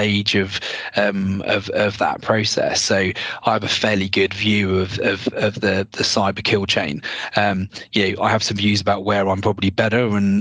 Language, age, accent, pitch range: English, 20-39, British, 100-115 Hz